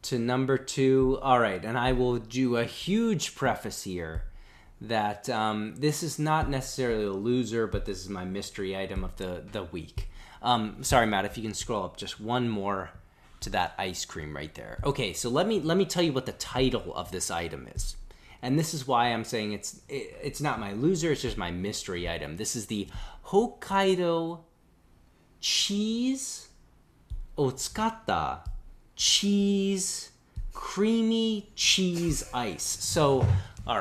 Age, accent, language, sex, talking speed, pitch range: 30-49, American, English, male, 160 wpm, 105-175 Hz